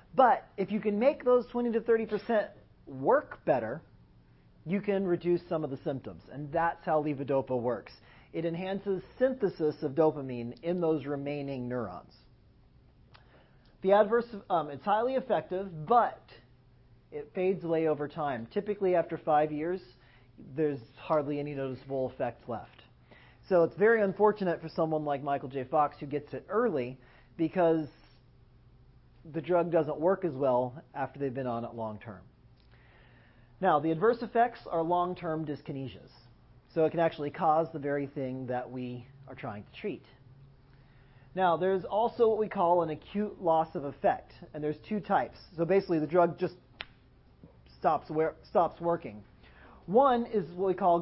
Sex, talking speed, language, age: male, 155 wpm, English, 40-59